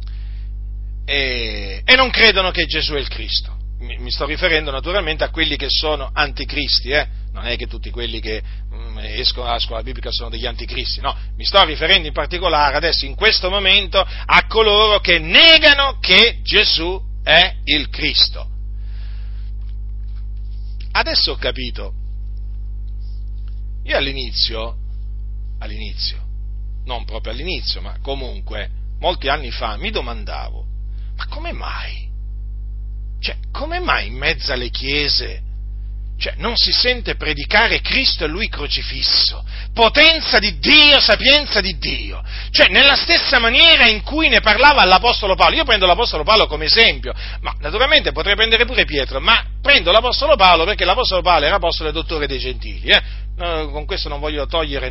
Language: Italian